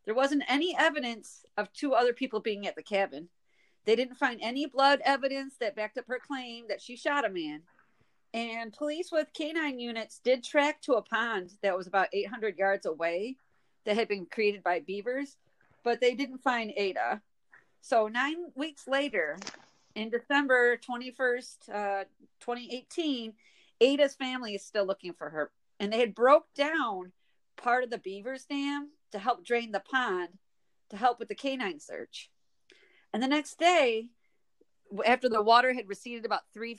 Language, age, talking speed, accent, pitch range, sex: English, 40-59, 170 wpm, American, 205-275 Hz, female